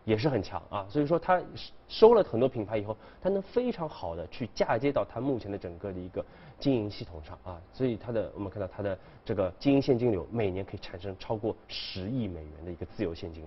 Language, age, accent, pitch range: Chinese, 20-39, native, 95-135 Hz